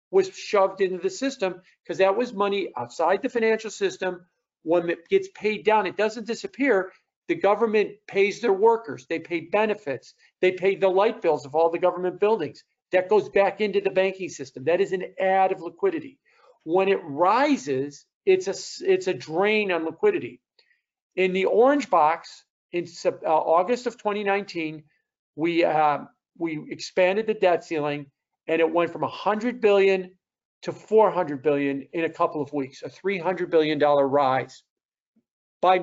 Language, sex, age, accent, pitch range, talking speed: English, male, 50-69, American, 160-210 Hz, 160 wpm